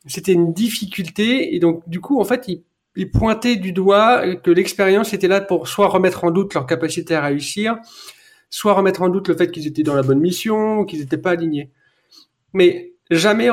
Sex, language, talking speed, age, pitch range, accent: male, French, 205 wpm, 40-59, 165-210 Hz, French